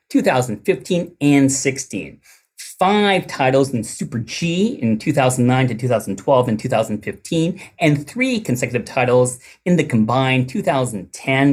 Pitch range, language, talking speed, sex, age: 125-170 Hz, English, 115 wpm, male, 40-59